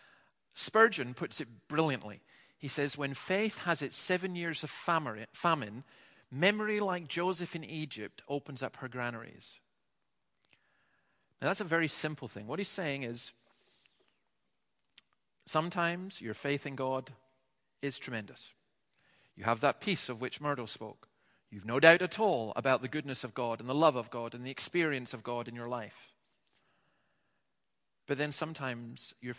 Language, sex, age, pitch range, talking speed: English, male, 40-59, 120-150 Hz, 155 wpm